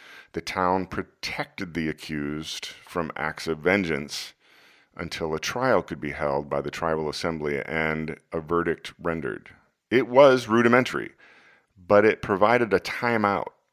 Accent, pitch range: American, 80-100 Hz